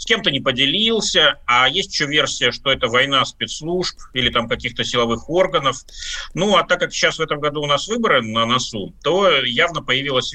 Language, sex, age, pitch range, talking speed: Russian, male, 30-49, 115-150 Hz, 185 wpm